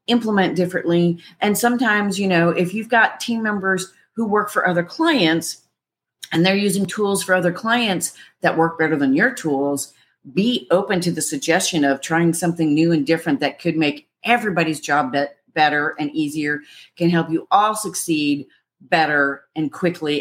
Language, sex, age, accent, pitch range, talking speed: English, female, 40-59, American, 155-190 Hz, 165 wpm